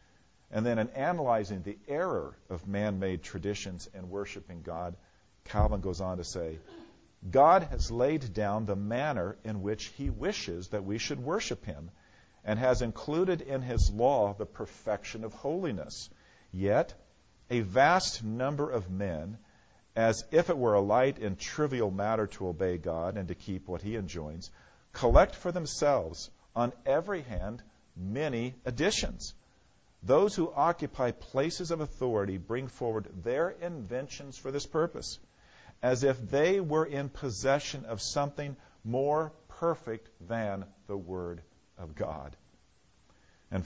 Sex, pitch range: male, 95-125 Hz